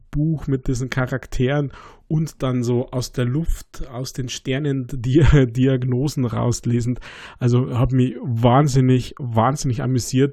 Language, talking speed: German, 130 wpm